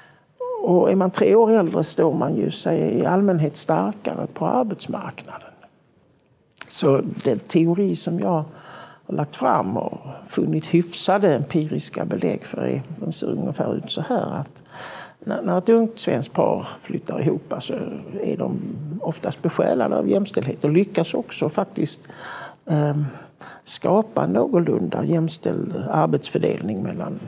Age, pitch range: 60-79, 170-220 Hz